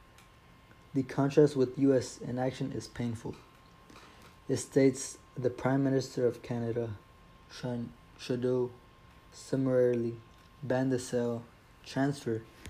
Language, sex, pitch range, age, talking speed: English, male, 115-130 Hz, 20-39, 95 wpm